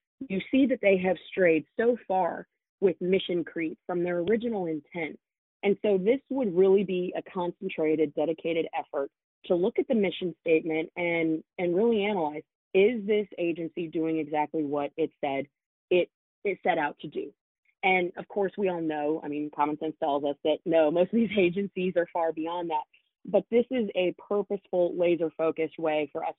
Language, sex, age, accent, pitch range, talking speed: English, female, 30-49, American, 160-195 Hz, 180 wpm